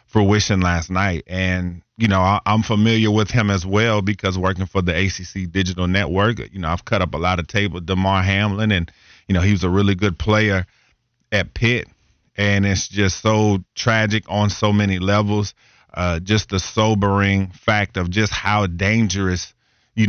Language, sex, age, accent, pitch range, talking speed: English, male, 30-49, American, 95-115 Hz, 185 wpm